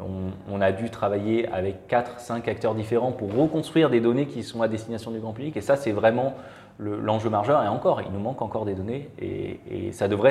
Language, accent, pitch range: French, French, 95-120 Hz